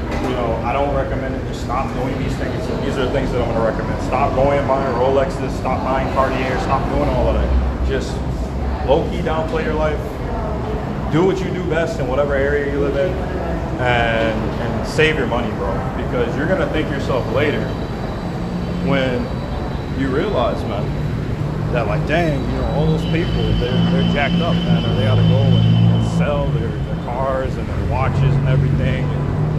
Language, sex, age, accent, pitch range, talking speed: English, male, 30-49, American, 115-140 Hz, 185 wpm